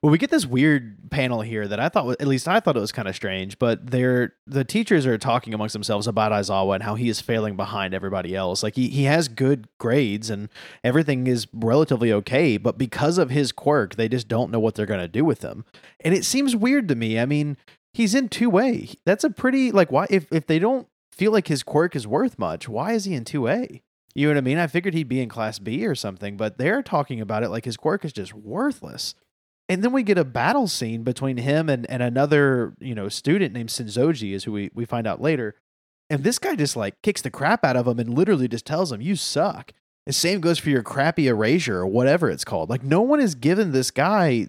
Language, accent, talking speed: English, American, 245 wpm